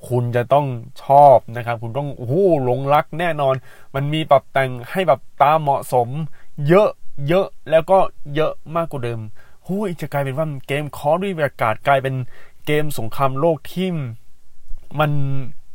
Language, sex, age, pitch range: Thai, male, 20-39, 105-145 Hz